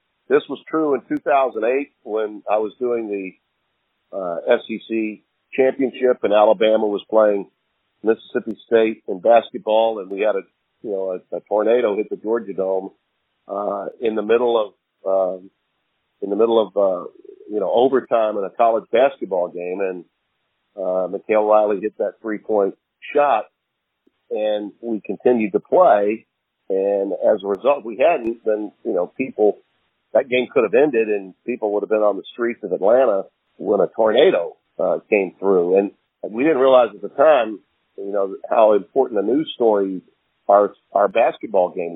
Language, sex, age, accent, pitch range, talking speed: English, male, 50-69, American, 105-125 Hz, 165 wpm